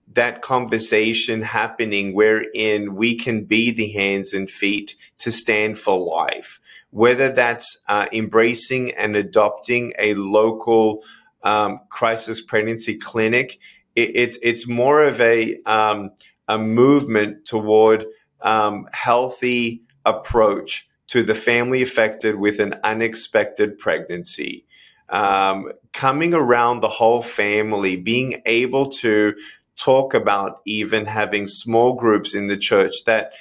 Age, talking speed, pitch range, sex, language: 30-49, 120 wpm, 105-120 Hz, male, English